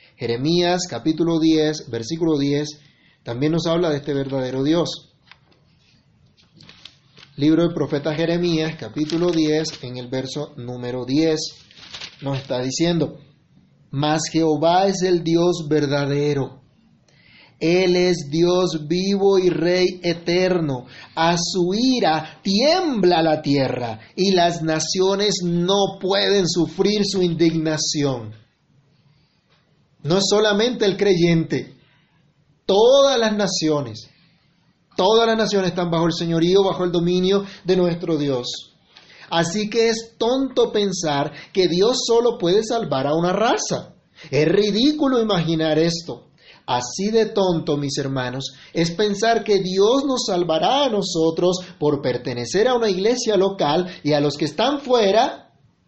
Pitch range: 150-195 Hz